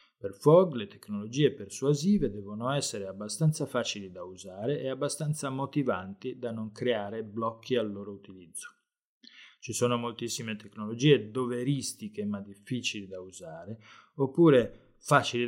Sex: male